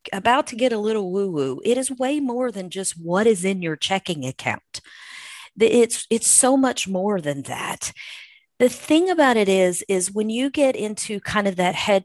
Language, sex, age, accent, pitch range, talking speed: English, female, 40-59, American, 165-225 Hz, 195 wpm